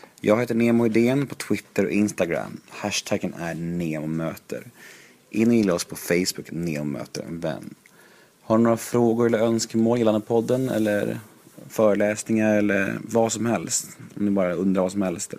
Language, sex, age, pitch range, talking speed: Swedish, male, 30-49, 95-120 Hz, 150 wpm